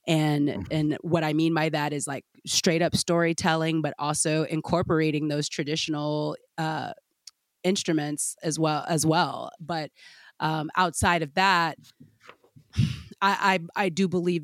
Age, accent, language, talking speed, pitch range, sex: 30-49, American, English, 135 wpm, 145-160 Hz, female